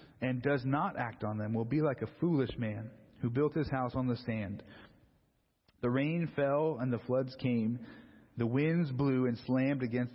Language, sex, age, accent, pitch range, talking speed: English, male, 30-49, American, 115-140 Hz, 190 wpm